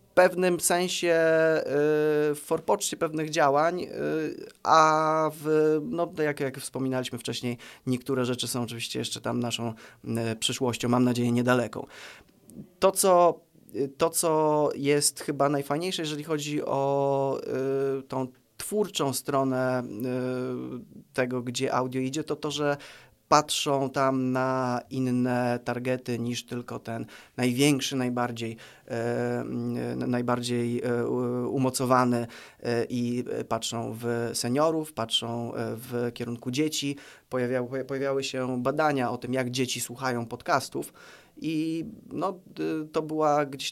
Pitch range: 120-145 Hz